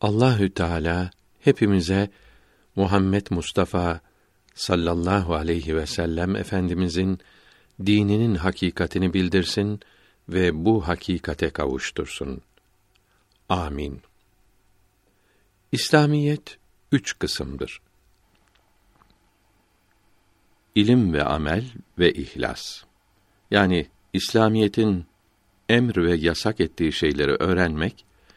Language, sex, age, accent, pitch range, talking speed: Turkish, male, 60-79, native, 90-105 Hz, 70 wpm